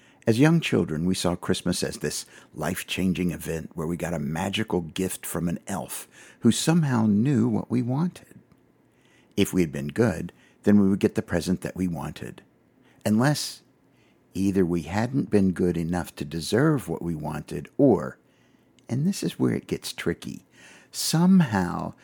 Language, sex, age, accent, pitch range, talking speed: English, male, 60-79, American, 85-120 Hz, 165 wpm